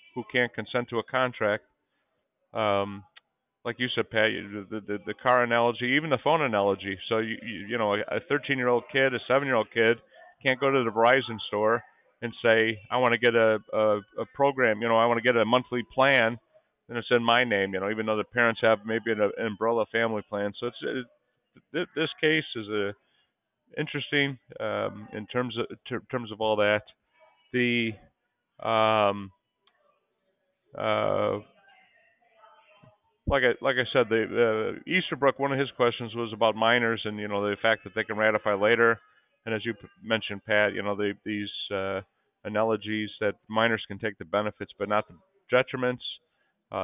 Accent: American